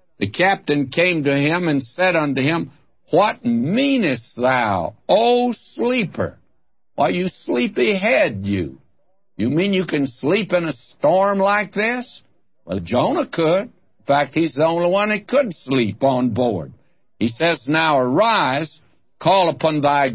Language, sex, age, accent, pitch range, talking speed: English, male, 60-79, American, 130-170 Hz, 150 wpm